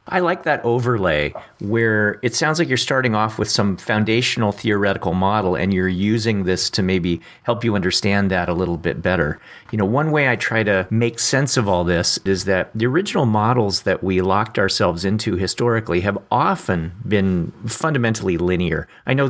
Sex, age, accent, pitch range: male, 40-59, American, 95-120 Hz